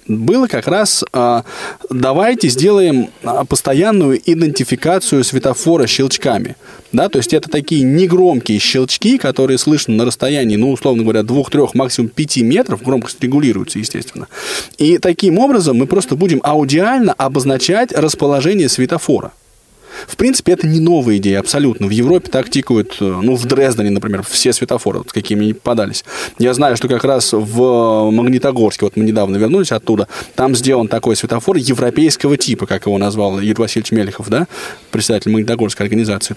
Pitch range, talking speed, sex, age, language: 115-145 Hz, 145 wpm, male, 20-39, Russian